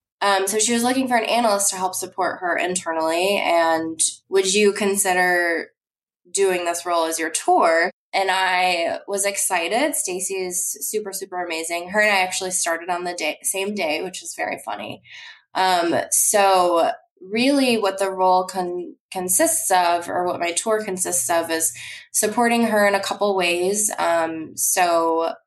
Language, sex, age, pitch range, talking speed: English, female, 20-39, 170-205 Hz, 160 wpm